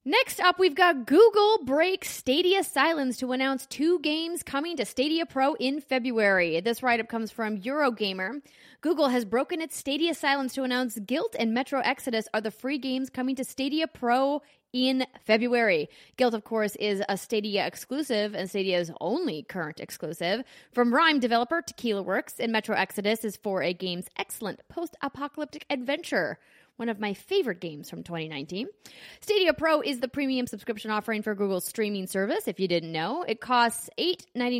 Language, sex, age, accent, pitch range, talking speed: English, female, 20-39, American, 210-290 Hz, 165 wpm